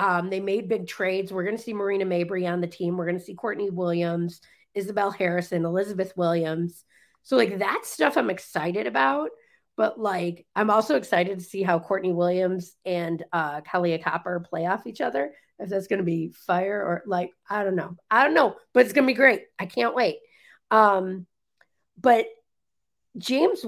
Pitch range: 180-225 Hz